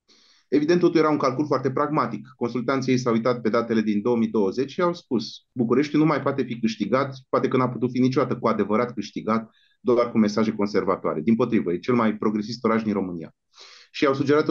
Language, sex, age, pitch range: Romanian, male, 30-49, 110-135 Hz